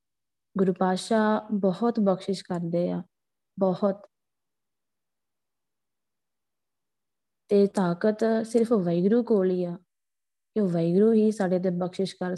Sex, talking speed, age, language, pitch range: female, 90 wpm, 20-39, Punjabi, 175-200 Hz